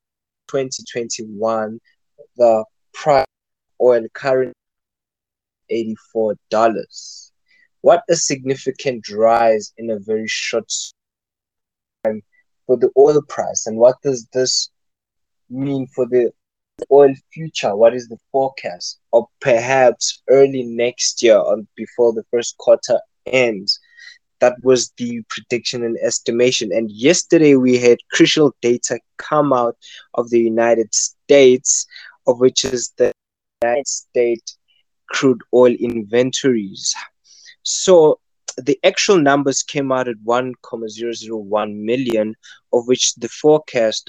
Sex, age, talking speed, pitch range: male, 20-39, 115 wpm, 110-135 Hz